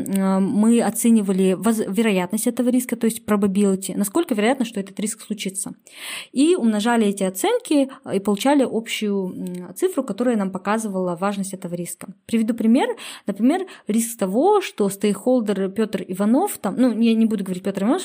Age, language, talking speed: 20-39, Russian, 150 wpm